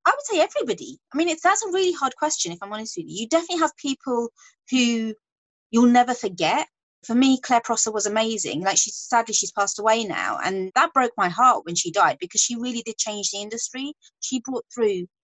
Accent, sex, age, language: British, female, 30-49, English